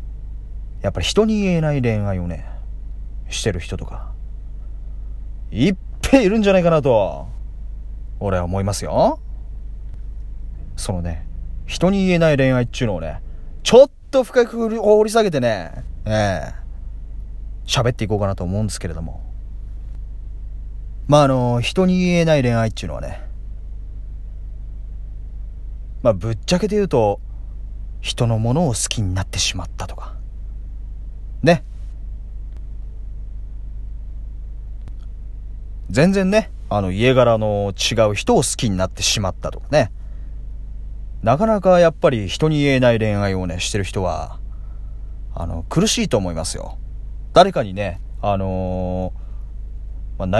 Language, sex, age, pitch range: Japanese, male, 30-49, 90-120 Hz